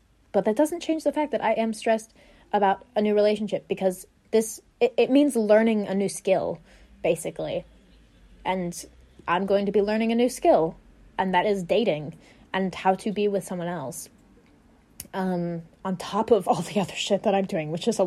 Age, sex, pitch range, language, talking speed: 20-39, female, 180-220 Hz, English, 195 wpm